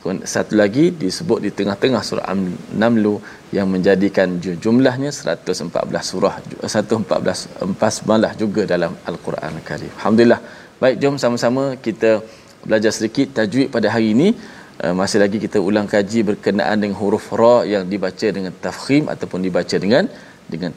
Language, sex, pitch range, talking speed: Malayalam, male, 105-125 Hz, 135 wpm